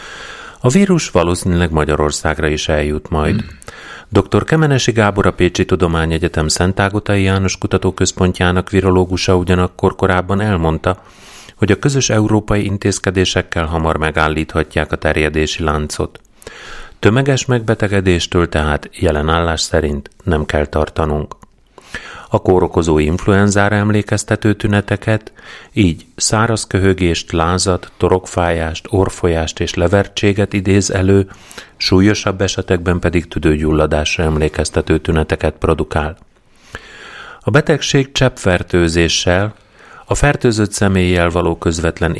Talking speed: 100 wpm